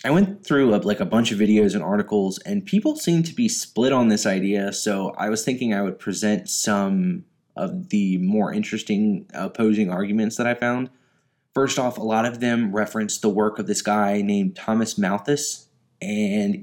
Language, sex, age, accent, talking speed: English, male, 20-39, American, 190 wpm